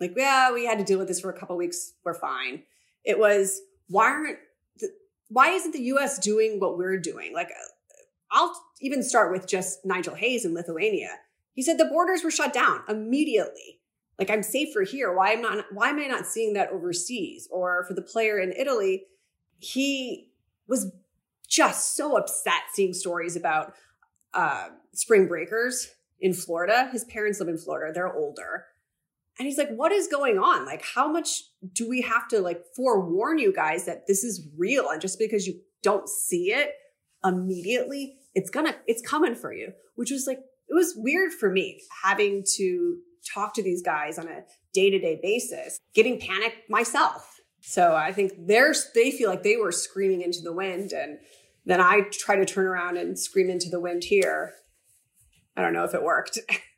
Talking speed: 185 wpm